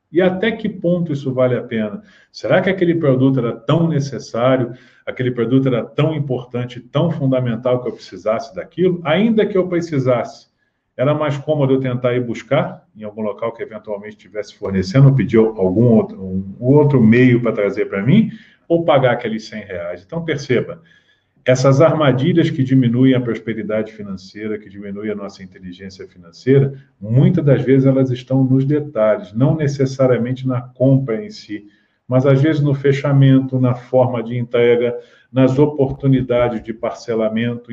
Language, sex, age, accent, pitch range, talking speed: Portuguese, male, 40-59, Brazilian, 115-140 Hz, 160 wpm